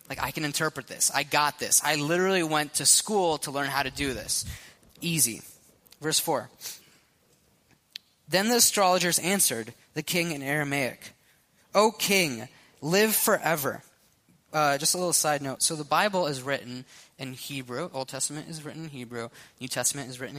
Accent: American